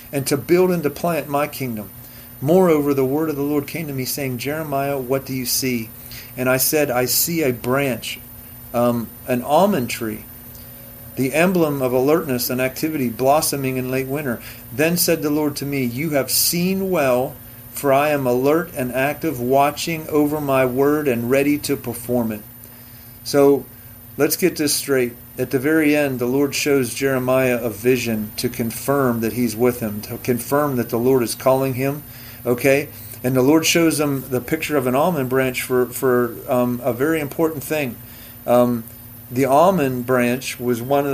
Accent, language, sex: American, English, male